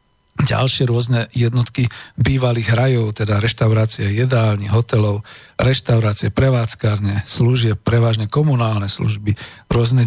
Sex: male